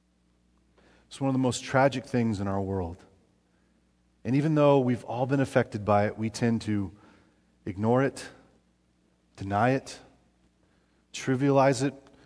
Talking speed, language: 135 wpm, English